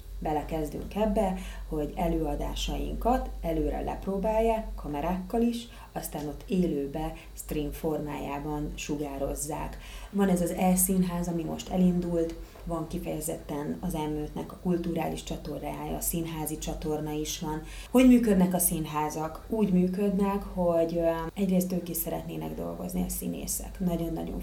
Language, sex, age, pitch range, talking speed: Hungarian, female, 30-49, 165-205 Hz, 120 wpm